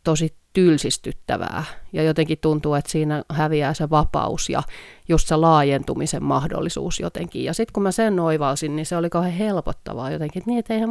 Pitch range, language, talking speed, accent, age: 145-170 Hz, Finnish, 175 wpm, native, 30-49